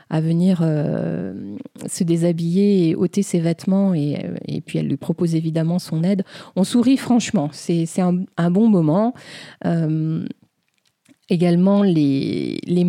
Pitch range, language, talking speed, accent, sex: 170-205 Hz, French, 135 wpm, French, female